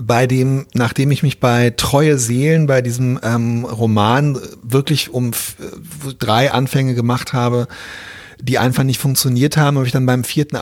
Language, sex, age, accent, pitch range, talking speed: German, male, 40-59, German, 115-145 Hz, 160 wpm